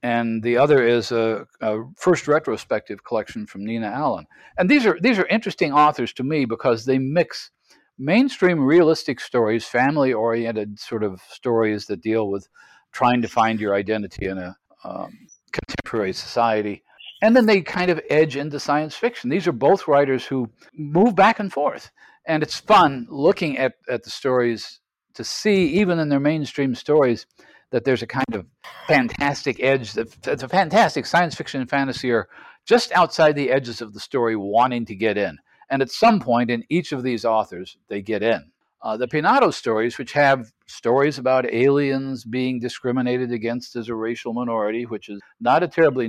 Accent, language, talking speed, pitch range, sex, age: American, English, 175 wpm, 115-155 Hz, male, 60-79